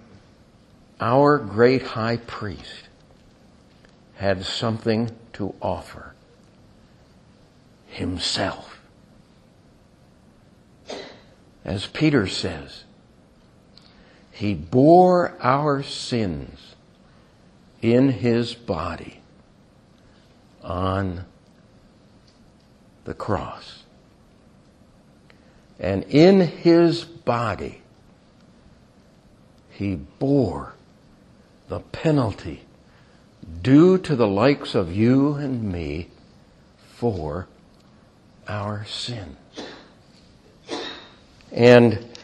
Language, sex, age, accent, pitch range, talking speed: English, male, 60-79, American, 105-140 Hz, 60 wpm